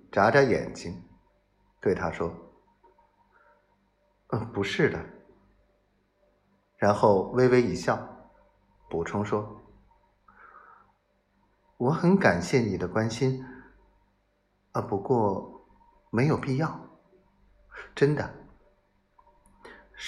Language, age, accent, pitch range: Chinese, 50-69, native, 100-140 Hz